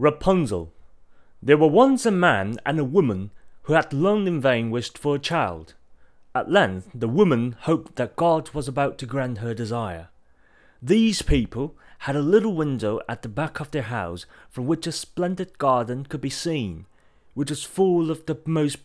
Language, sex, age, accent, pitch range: Chinese, male, 30-49, British, 110-155 Hz